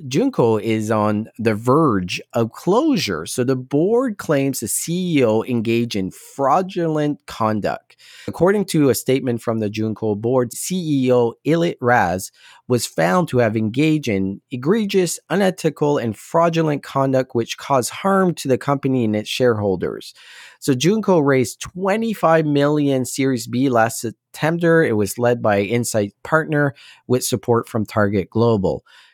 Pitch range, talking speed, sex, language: 105-155 Hz, 140 wpm, male, English